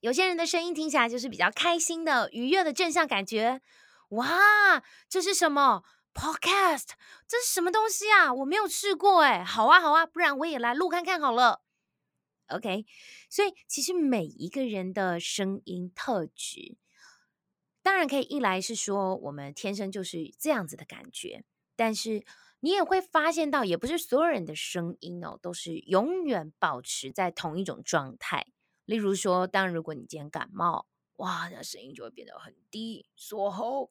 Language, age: Chinese, 20-39